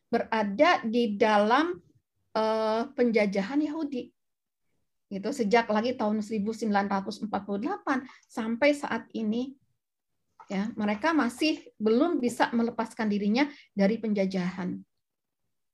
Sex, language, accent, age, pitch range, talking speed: female, Indonesian, native, 40-59, 210-270 Hz, 90 wpm